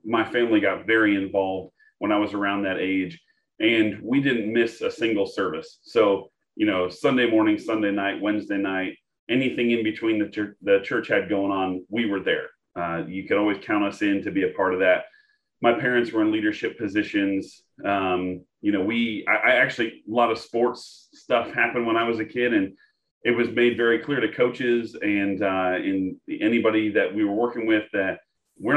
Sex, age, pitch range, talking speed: male, 30-49, 100-155 Hz, 200 wpm